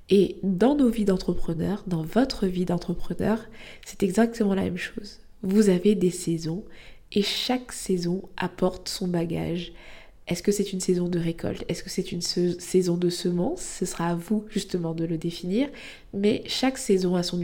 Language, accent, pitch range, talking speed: French, French, 175-215 Hz, 175 wpm